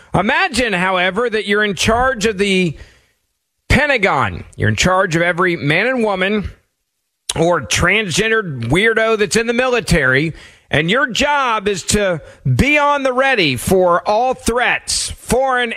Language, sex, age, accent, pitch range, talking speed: English, male, 40-59, American, 170-230 Hz, 140 wpm